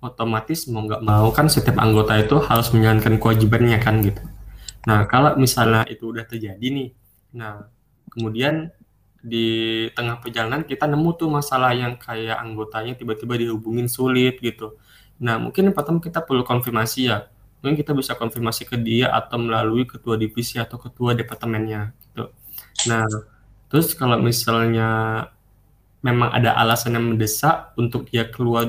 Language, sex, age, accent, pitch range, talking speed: Indonesian, male, 20-39, native, 110-125 Hz, 145 wpm